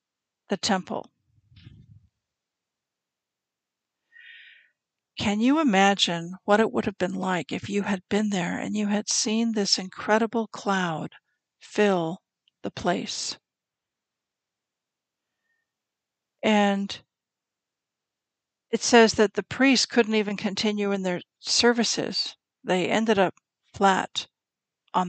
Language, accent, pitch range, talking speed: English, American, 190-230 Hz, 105 wpm